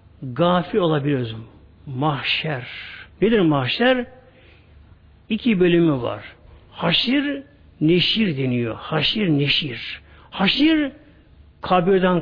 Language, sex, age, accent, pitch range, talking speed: Turkish, male, 60-79, native, 125-210 Hz, 75 wpm